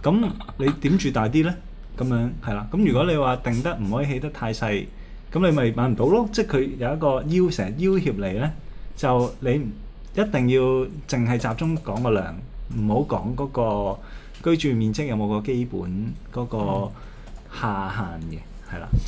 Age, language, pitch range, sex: 20-39, Chinese, 105-145 Hz, male